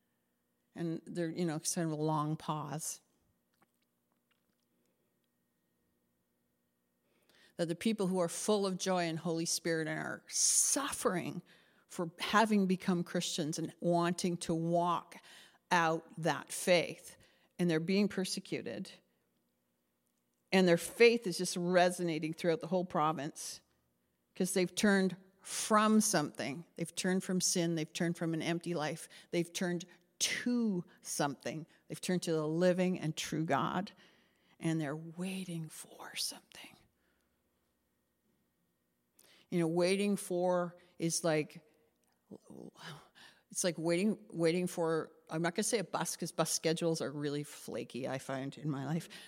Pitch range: 150-180 Hz